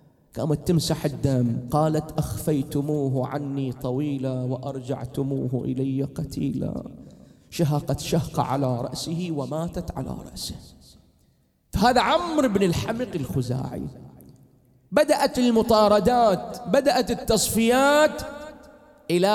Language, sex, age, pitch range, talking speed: Arabic, male, 30-49, 135-225 Hz, 85 wpm